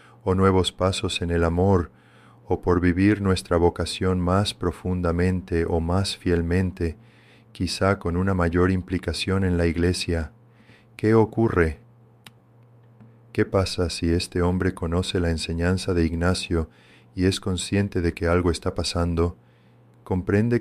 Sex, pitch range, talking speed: male, 85-100 Hz, 130 wpm